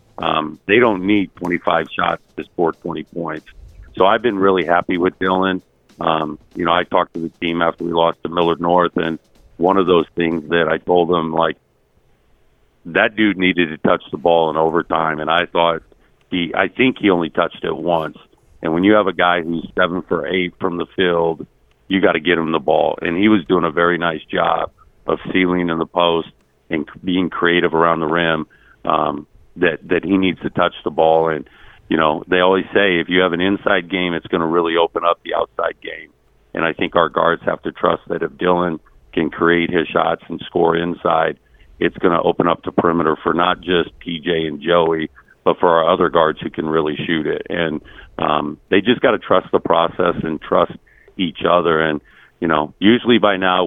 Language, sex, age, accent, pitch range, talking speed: English, male, 50-69, American, 80-90 Hz, 210 wpm